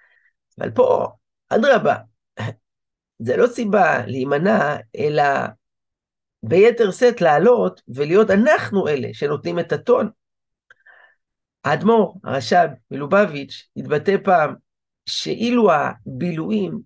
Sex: male